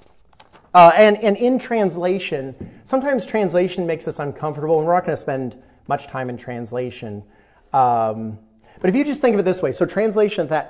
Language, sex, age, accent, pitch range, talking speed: English, male, 30-49, American, 130-180 Hz, 190 wpm